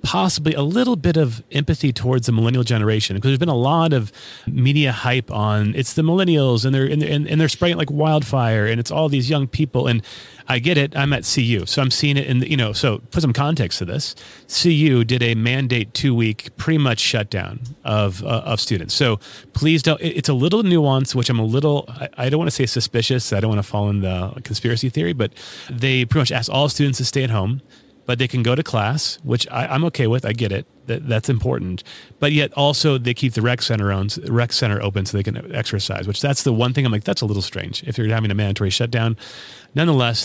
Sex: male